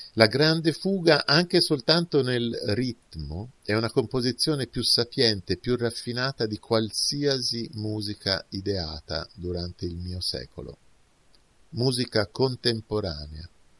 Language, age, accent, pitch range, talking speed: Italian, 50-69, native, 85-120 Hz, 105 wpm